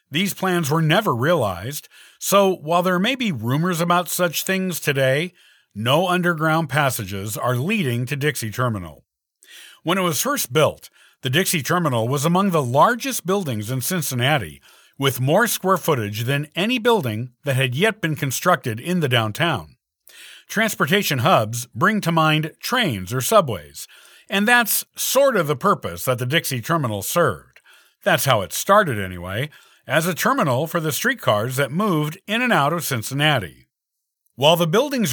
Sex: male